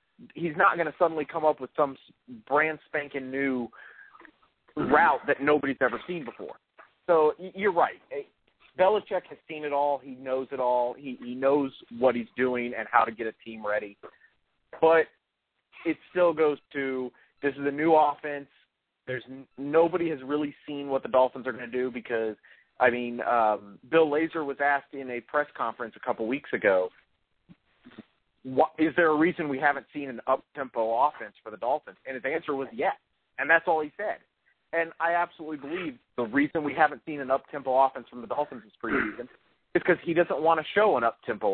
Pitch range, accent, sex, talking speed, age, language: 130-160 Hz, American, male, 190 wpm, 40-59, English